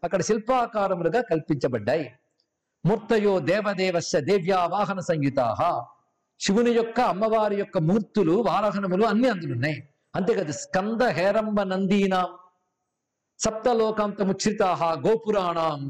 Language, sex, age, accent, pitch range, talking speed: Telugu, male, 50-69, native, 170-225 Hz, 85 wpm